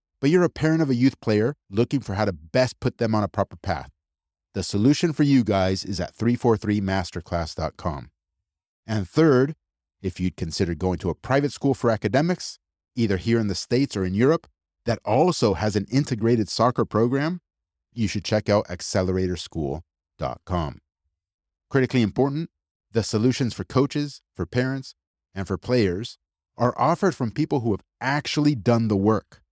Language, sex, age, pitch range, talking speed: English, male, 30-49, 95-130 Hz, 165 wpm